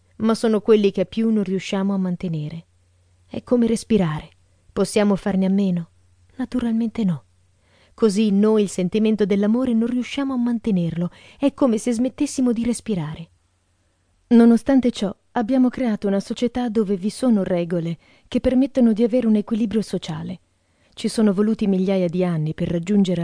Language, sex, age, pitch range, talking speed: Italian, female, 30-49, 170-220 Hz, 150 wpm